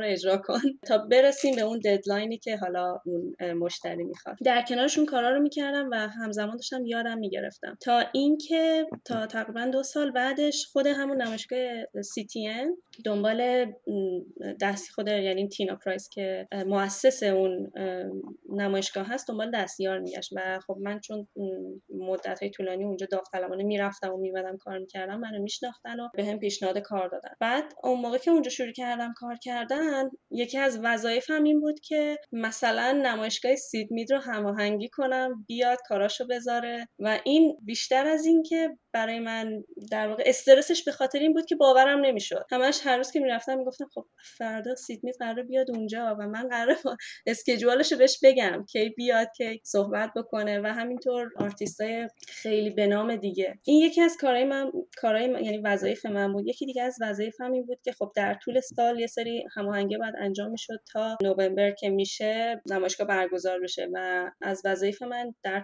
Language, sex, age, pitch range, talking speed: English, female, 10-29, 200-255 Hz, 175 wpm